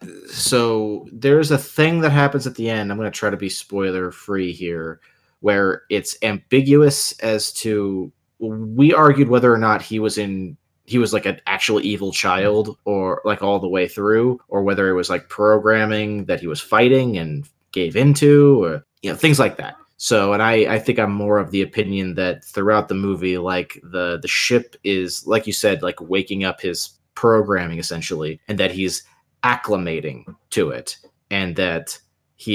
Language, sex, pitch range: English, male, 95-130 Hz